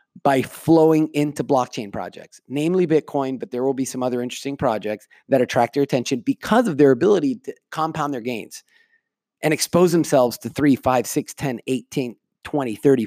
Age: 30-49